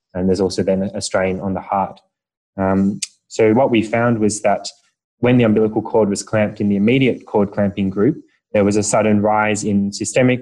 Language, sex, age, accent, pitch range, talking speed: English, male, 20-39, Australian, 100-110 Hz, 200 wpm